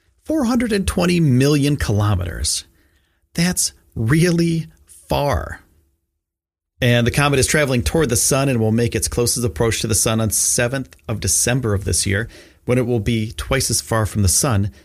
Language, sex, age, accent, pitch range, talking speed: English, male, 40-59, American, 85-135 Hz, 160 wpm